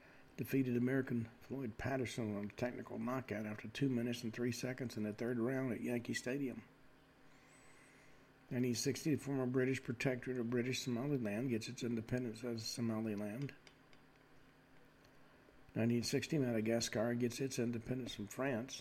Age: 50-69